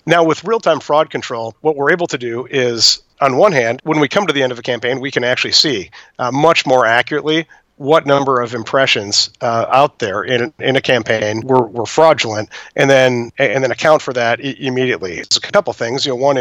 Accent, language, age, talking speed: American, English, 50-69, 220 wpm